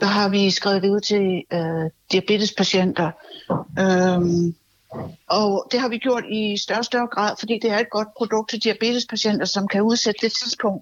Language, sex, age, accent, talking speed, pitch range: Danish, female, 60-79, native, 170 wpm, 205-245 Hz